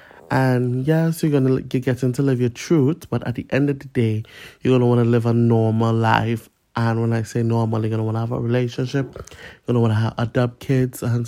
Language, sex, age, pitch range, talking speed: English, male, 20-39, 115-130 Hz, 235 wpm